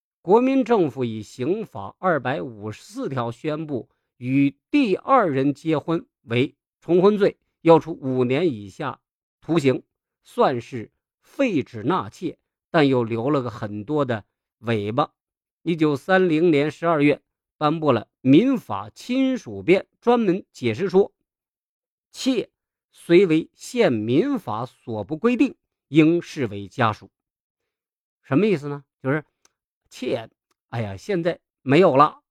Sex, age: male, 50-69